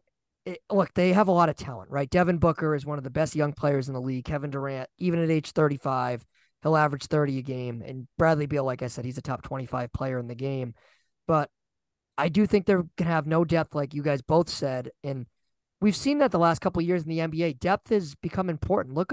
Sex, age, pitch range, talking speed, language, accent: male, 20-39, 140-170 Hz, 245 wpm, English, American